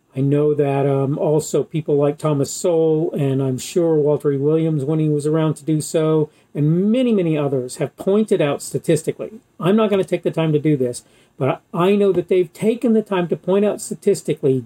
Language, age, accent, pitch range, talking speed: English, 40-59, American, 145-200 Hz, 215 wpm